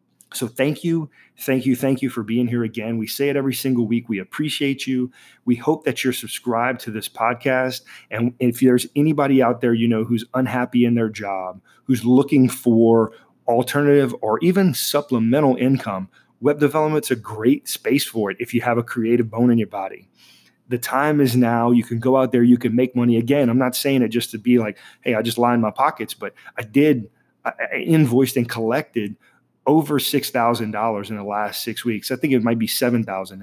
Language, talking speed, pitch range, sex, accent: English, 205 wpm, 115-130 Hz, male, American